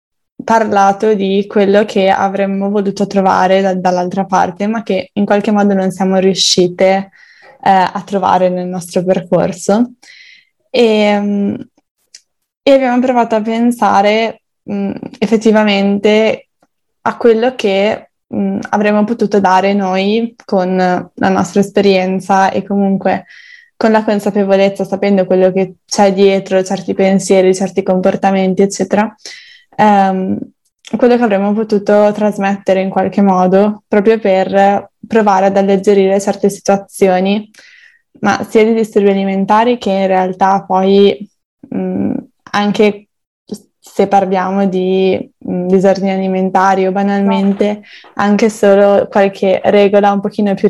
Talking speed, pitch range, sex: 110 wpm, 190-215 Hz, female